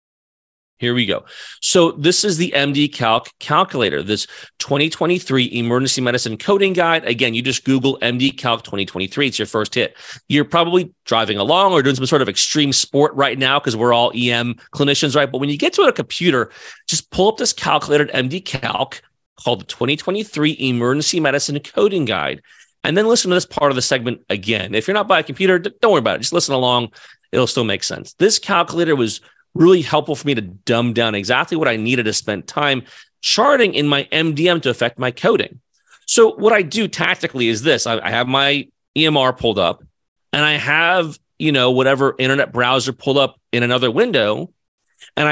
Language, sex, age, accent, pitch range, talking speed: English, male, 30-49, American, 120-160 Hz, 195 wpm